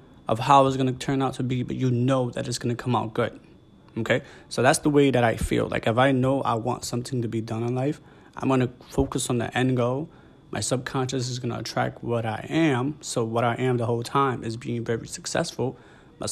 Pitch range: 120-135 Hz